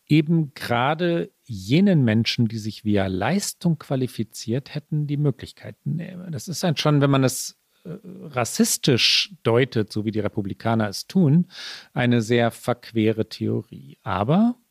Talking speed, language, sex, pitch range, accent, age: 140 wpm, German, male, 100-145 Hz, German, 40-59